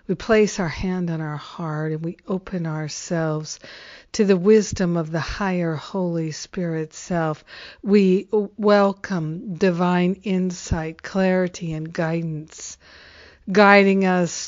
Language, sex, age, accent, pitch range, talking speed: English, female, 60-79, American, 165-185 Hz, 120 wpm